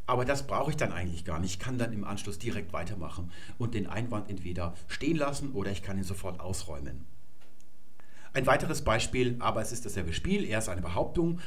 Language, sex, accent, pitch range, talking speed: German, male, German, 95-140 Hz, 205 wpm